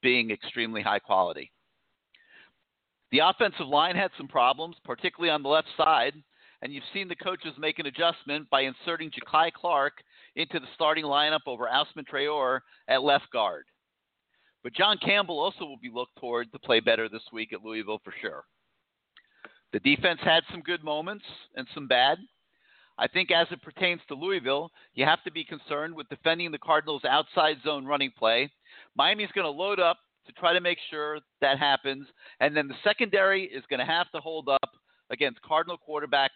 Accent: American